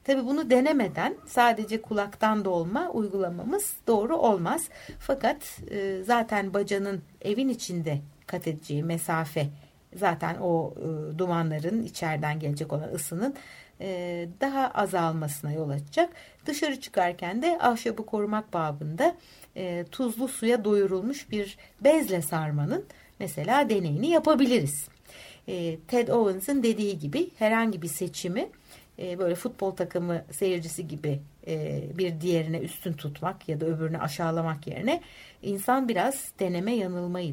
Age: 60-79